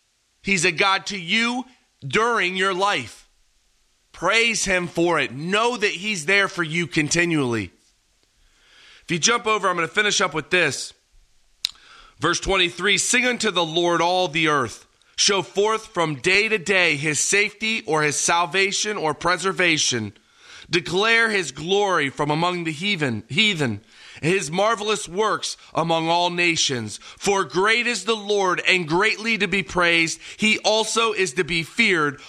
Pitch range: 160-205 Hz